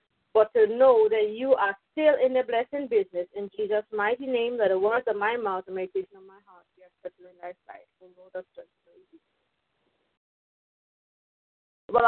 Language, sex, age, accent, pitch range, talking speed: English, female, 30-49, Indian, 215-290 Hz, 170 wpm